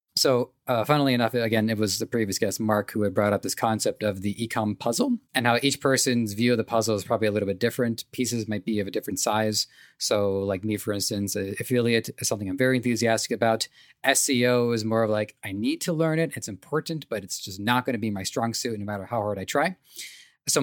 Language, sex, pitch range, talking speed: English, male, 105-125 Hz, 245 wpm